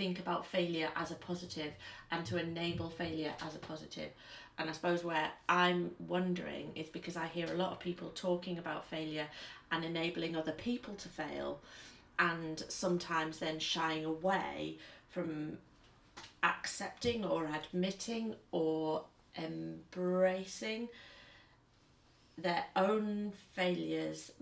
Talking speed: 125 wpm